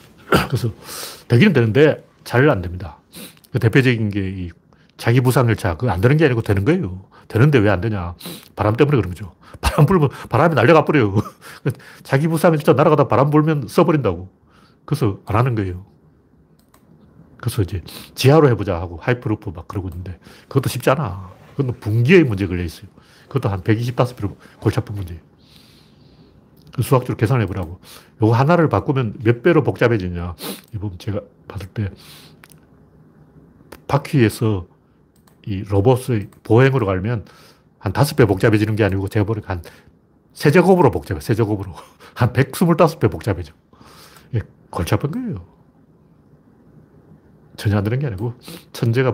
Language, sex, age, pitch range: Korean, male, 40-59, 100-135 Hz